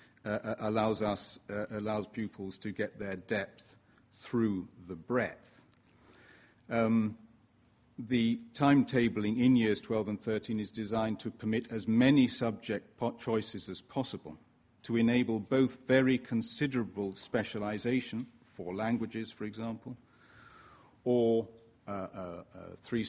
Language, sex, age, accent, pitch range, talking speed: English, male, 50-69, British, 100-115 Hz, 120 wpm